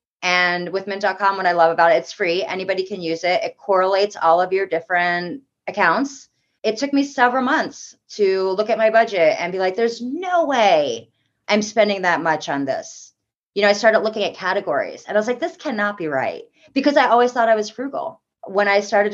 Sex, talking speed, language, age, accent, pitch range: female, 215 wpm, English, 30-49, American, 175-225 Hz